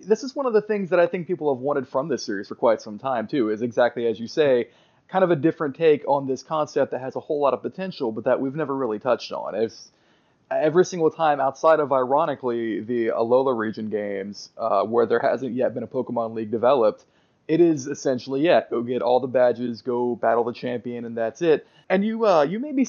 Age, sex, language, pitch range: 20-39, male, English, 115-160 Hz